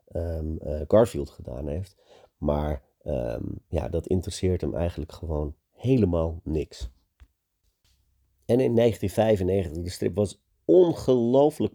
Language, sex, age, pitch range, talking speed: Dutch, male, 40-59, 80-100 Hz, 110 wpm